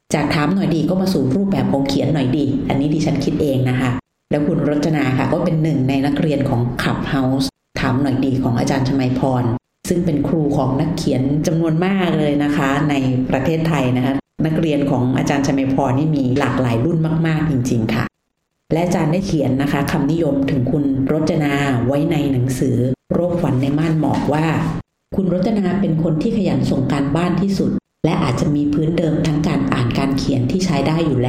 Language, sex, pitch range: Thai, female, 135-165 Hz